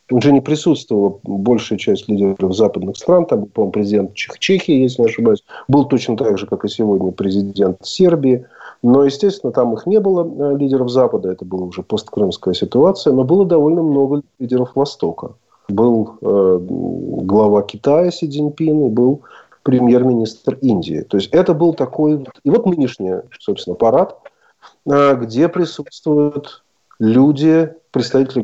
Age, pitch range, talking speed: 40-59, 105-150 Hz, 145 wpm